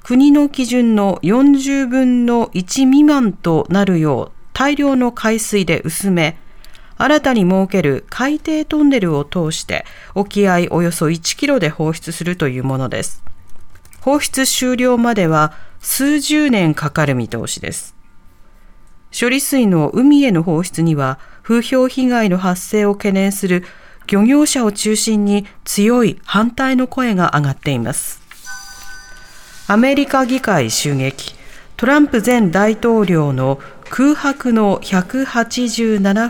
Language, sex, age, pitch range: Japanese, female, 40-59, 165-255 Hz